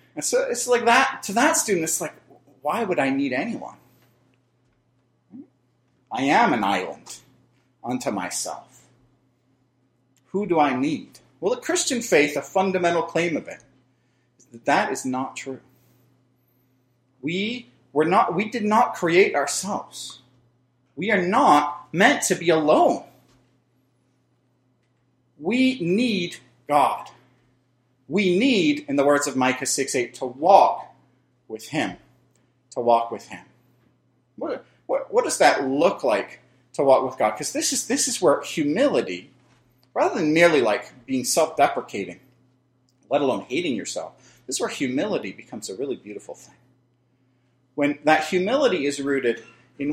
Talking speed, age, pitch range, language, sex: 140 wpm, 40-59, 125-180 Hz, English, male